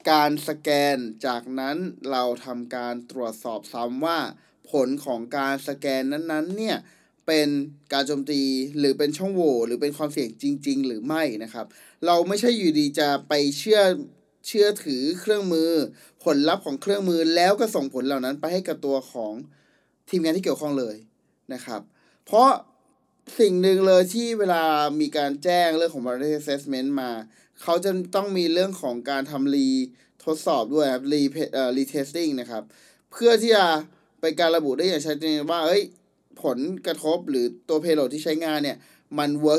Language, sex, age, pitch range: Thai, male, 20-39, 140-175 Hz